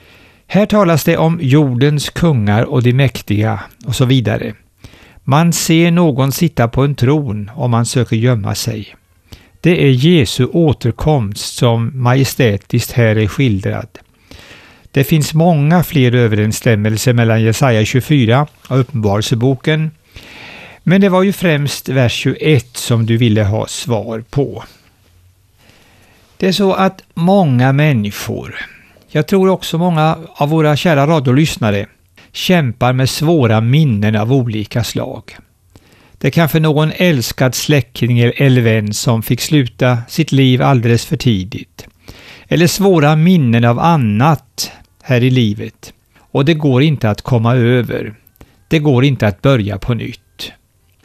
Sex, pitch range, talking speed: male, 110-155 Hz, 135 wpm